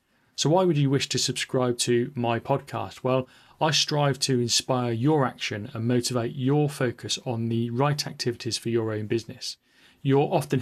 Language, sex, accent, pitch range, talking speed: English, male, British, 120-140 Hz, 175 wpm